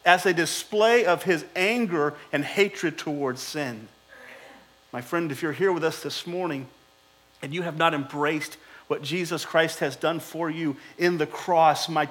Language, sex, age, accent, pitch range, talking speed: English, male, 40-59, American, 145-190 Hz, 175 wpm